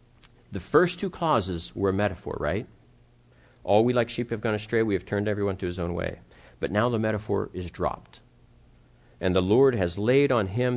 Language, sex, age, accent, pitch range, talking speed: English, male, 50-69, American, 85-135 Hz, 200 wpm